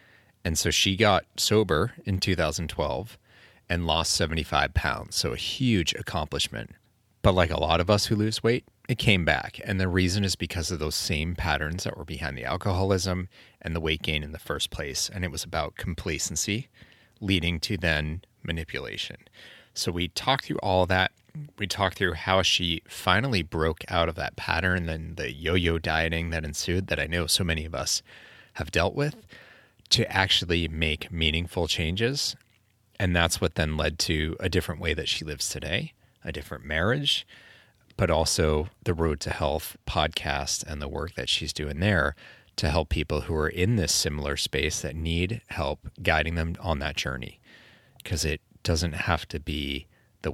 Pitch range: 80-95 Hz